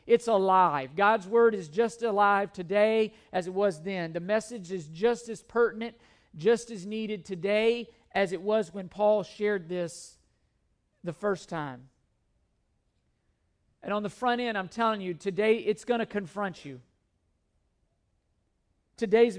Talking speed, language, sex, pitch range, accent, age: 145 wpm, English, male, 185-220 Hz, American, 50-69